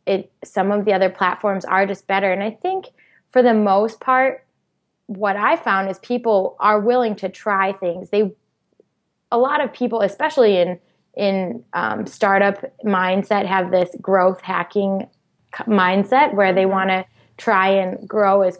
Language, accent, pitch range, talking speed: English, American, 185-215 Hz, 160 wpm